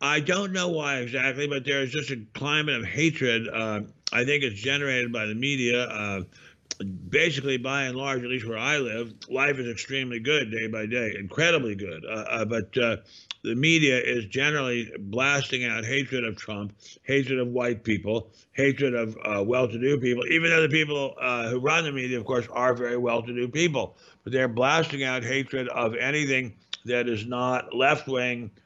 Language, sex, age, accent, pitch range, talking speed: English, male, 50-69, American, 115-140 Hz, 185 wpm